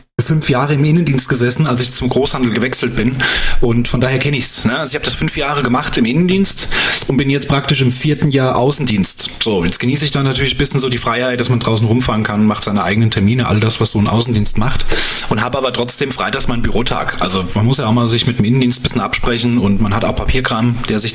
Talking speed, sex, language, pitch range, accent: 250 wpm, male, German, 110-130 Hz, German